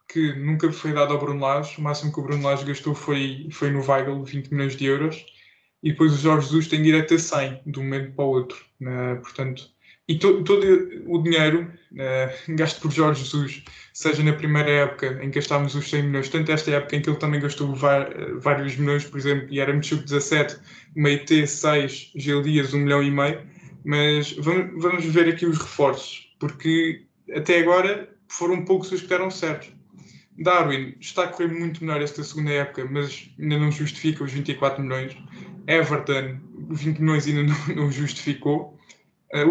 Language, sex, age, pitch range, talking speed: Portuguese, male, 20-39, 140-165 Hz, 190 wpm